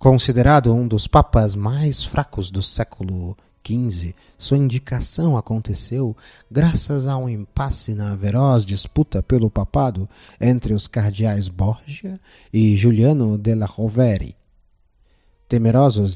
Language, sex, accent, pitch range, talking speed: Portuguese, male, Brazilian, 100-135 Hz, 115 wpm